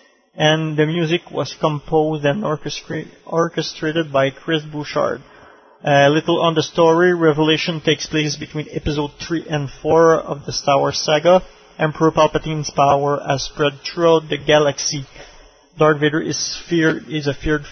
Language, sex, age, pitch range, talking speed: English, male, 30-49, 150-165 Hz, 150 wpm